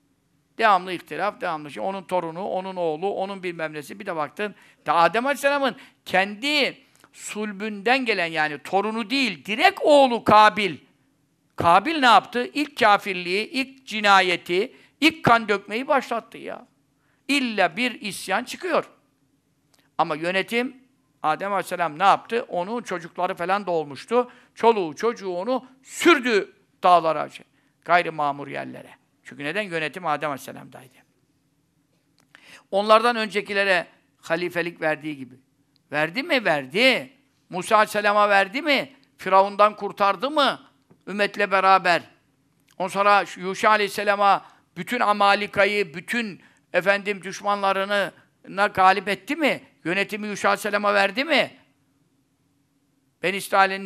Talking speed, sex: 110 wpm, male